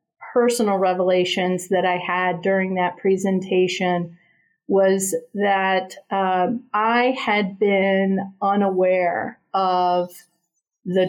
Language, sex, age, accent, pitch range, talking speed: English, female, 40-59, American, 175-205 Hz, 90 wpm